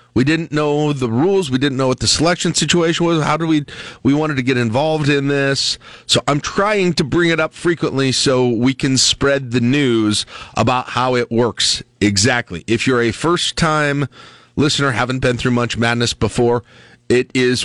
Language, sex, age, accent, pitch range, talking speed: English, male, 40-59, American, 110-140 Hz, 185 wpm